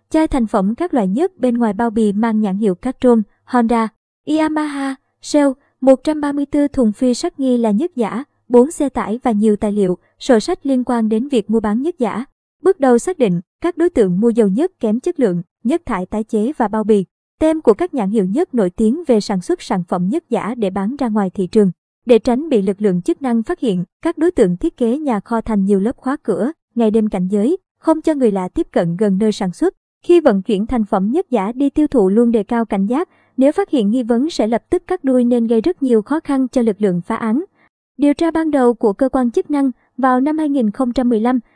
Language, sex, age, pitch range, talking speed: Vietnamese, male, 20-39, 220-285 Hz, 240 wpm